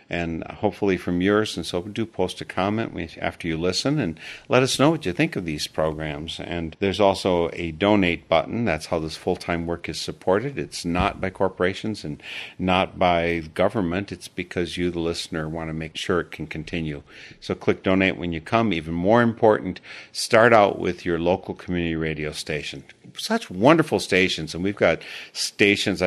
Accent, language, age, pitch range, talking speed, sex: American, English, 50-69, 80-95 Hz, 185 wpm, male